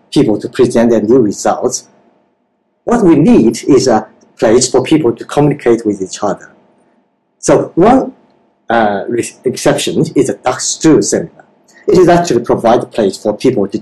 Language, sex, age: Japanese, male, 50-69